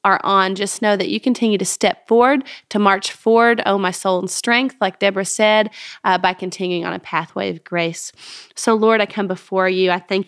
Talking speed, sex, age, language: 215 wpm, female, 30-49, English